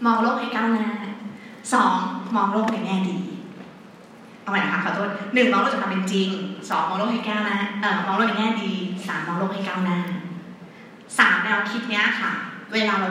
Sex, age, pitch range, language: female, 20-39, 195-240 Hz, Thai